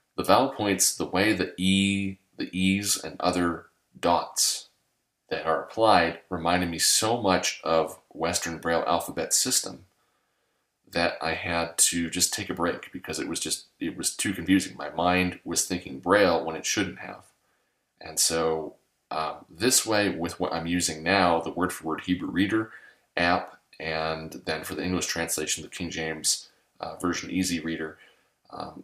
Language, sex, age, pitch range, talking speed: English, male, 30-49, 80-95 Hz, 160 wpm